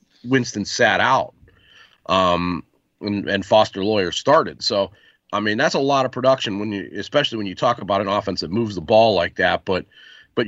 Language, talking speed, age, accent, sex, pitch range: English, 195 wpm, 40-59, American, male, 90-110 Hz